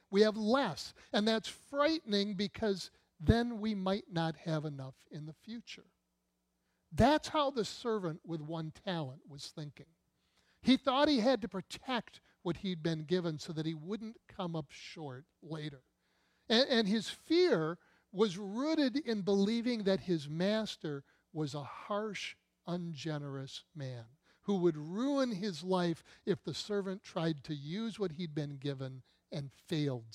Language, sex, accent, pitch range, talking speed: English, male, American, 155-225 Hz, 150 wpm